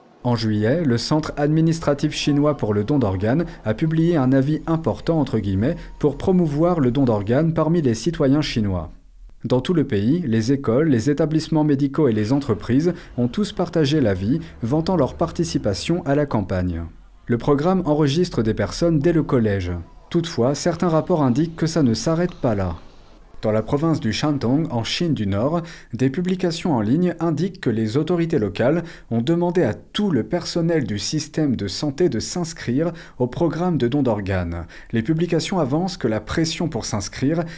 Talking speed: 175 wpm